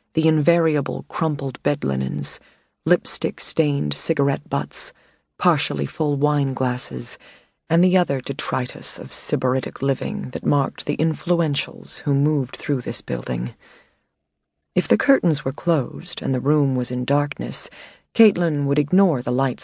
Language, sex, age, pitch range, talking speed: English, female, 40-59, 125-160 Hz, 135 wpm